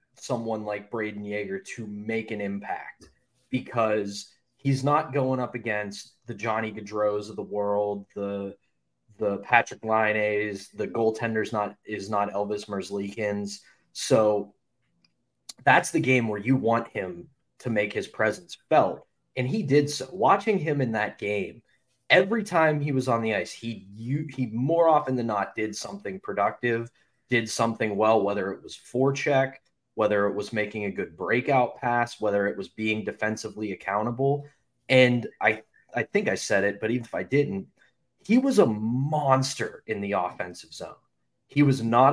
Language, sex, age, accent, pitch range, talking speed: English, male, 20-39, American, 105-135 Hz, 160 wpm